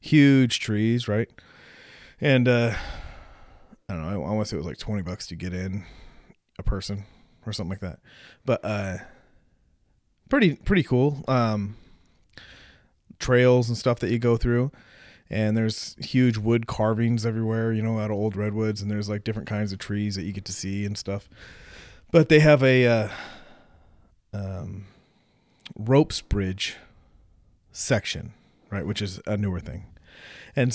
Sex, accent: male, American